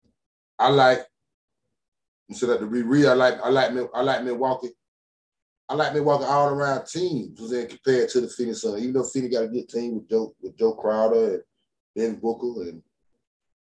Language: English